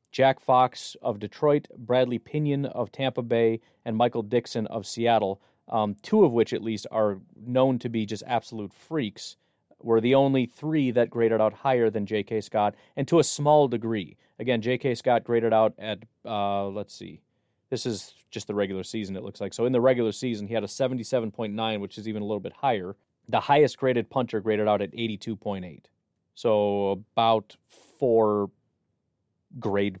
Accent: American